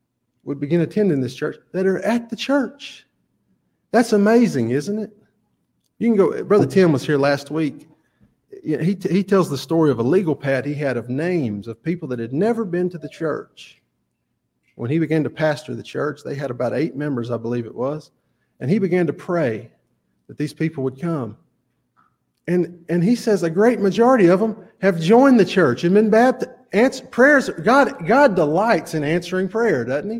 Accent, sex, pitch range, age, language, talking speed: American, male, 140-210 Hz, 40-59, English, 190 wpm